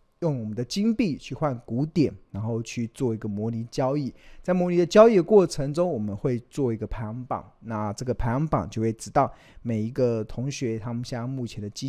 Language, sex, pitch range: Chinese, male, 115-150 Hz